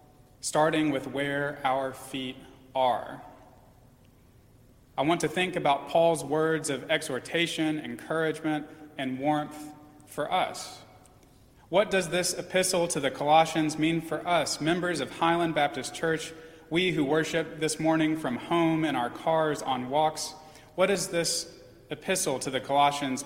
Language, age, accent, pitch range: English, 30-49, American, 130-160 Hz